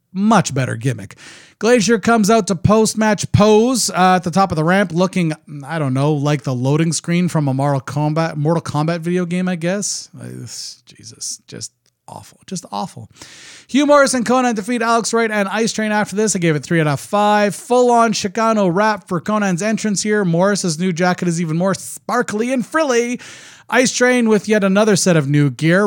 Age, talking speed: 30-49, 190 wpm